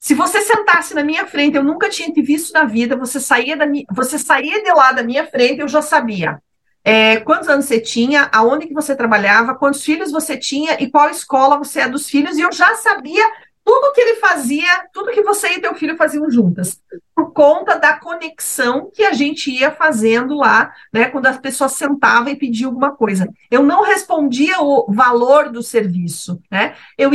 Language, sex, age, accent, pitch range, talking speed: Portuguese, female, 40-59, Brazilian, 240-335 Hz, 200 wpm